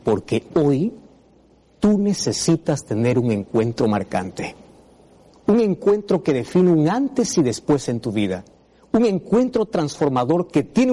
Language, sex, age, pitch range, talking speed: Spanish, male, 50-69, 125-190 Hz, 130 wpm